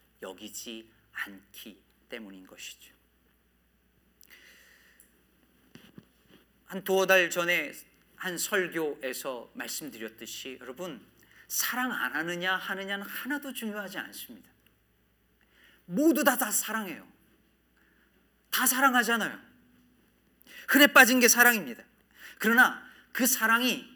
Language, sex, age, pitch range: Korean, male, 40-59, 135-225 Hz